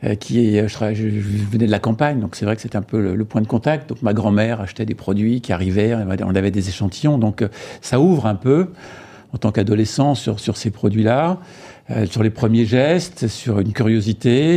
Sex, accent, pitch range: male, French, 105-125 Hz